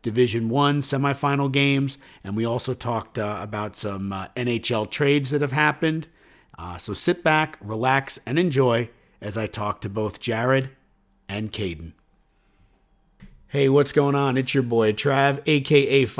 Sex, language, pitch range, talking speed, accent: male, English, 105-135 Hz, 150 wpm, American